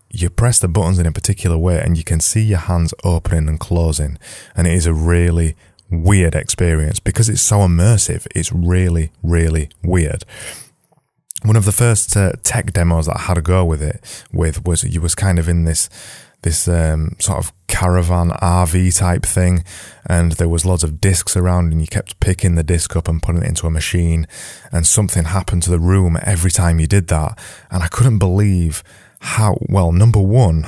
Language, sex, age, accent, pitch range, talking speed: English, male, 20-39, British, 85-105 Hz, 200 wpm